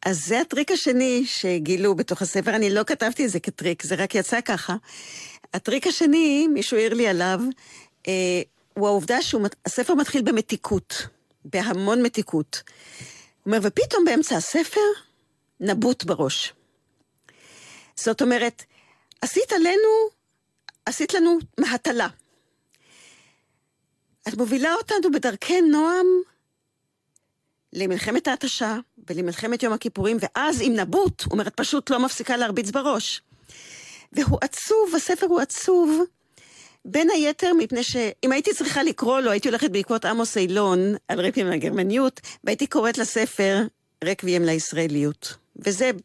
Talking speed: 120 wpm